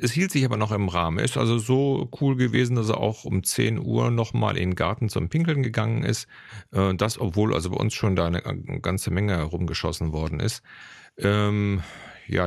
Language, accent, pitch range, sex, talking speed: German, German, 90-115 Hz, male, 195 wpm